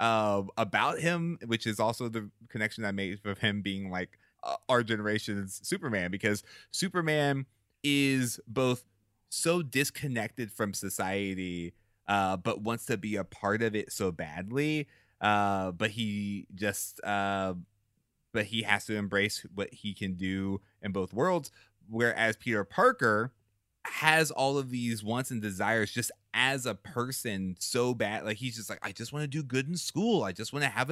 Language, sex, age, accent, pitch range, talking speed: English, male, 30-49, American, 100-125 Hz, 170 wpm